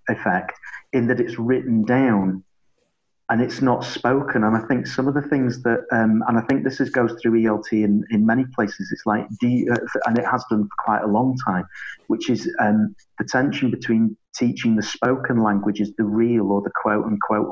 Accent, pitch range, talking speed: British, 105-125 Hz, 205 wpm